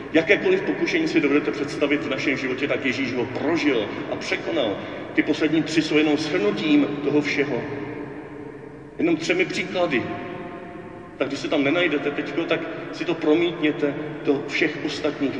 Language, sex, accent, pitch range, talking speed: Czech, male, native, 145-175 Hz, 145 wpm